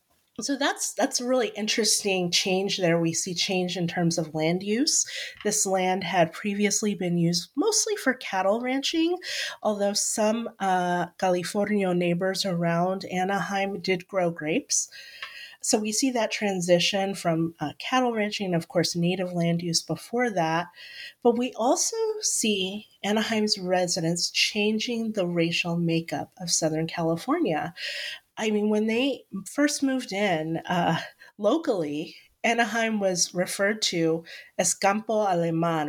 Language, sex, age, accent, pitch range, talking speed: English, female, 30-49, American, 175-230 Hz, 135 wpm